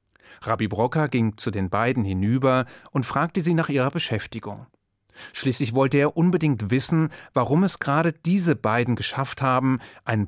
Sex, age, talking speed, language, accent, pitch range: male, 30-49, 150 wpm, German, German, 110-150 Hz